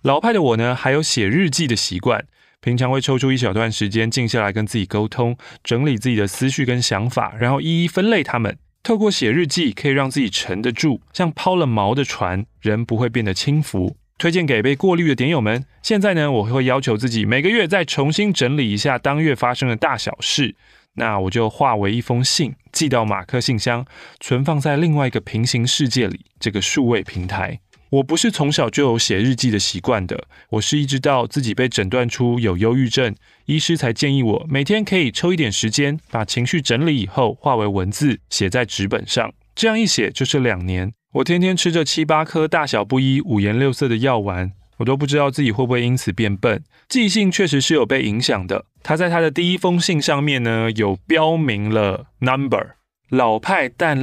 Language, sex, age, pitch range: Chinese, male, 20-39, 115-155 Hz